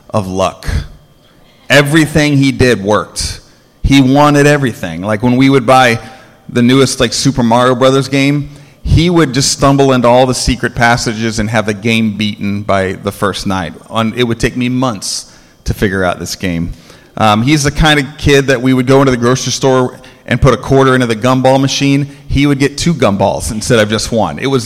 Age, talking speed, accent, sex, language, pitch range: 30-49, 200 wpm, American, male, English, 110-130 Hz